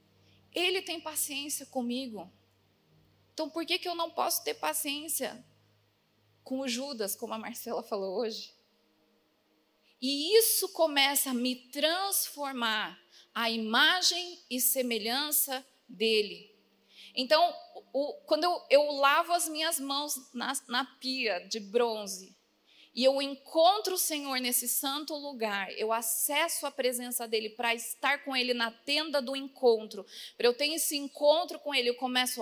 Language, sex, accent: Portuguese, female, Brazilian